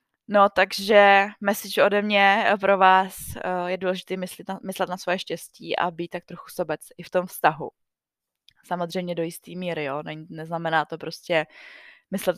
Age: 20-39